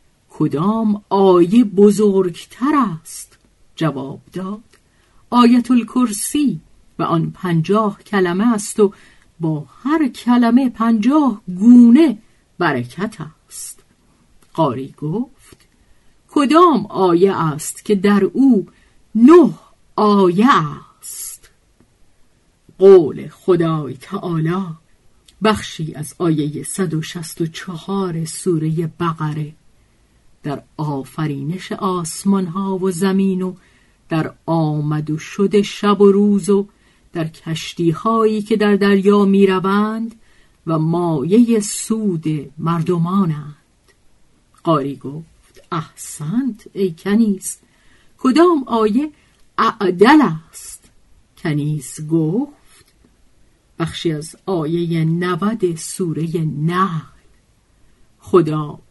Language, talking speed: Persian, 85 wpm